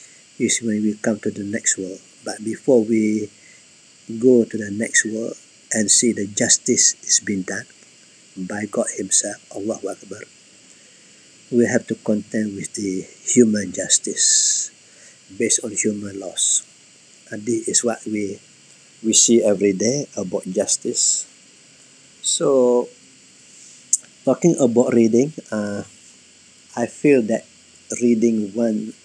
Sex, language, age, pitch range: male, English, 50-69, 100-120 Hz